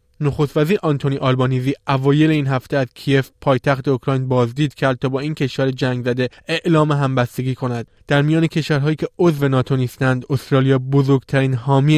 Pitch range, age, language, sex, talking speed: 125-145 Hz, 20-39, Persian, male, 155 wpm